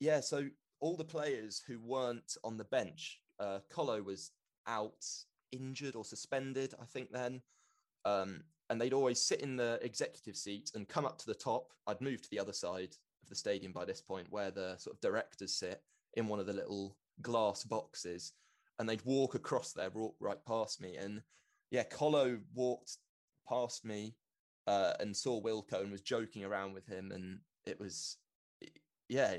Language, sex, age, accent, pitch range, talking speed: English, male, 20-39, British, 100-125 Hz, 180 wpm